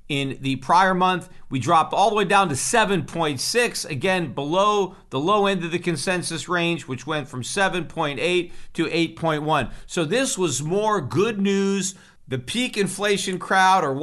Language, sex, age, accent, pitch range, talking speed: English, male, 50-69, American, 150-185 Hz, 165 wpm